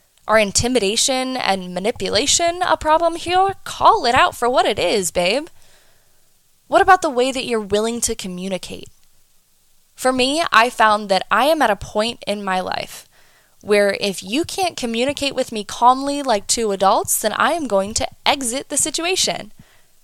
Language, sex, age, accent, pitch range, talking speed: English, female, 10-29, American, 195-270 Hz, 170 wpm